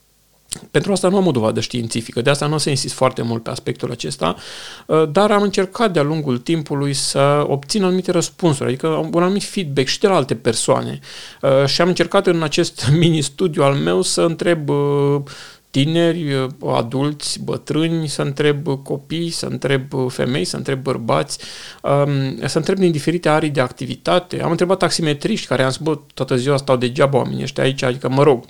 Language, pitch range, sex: Romanian, 130-165 Hz, male